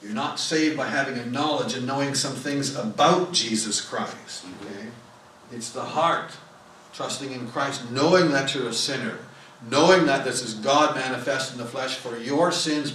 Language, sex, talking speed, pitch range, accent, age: English, male, 175 wpm, 120-155 Hz, American, 60-79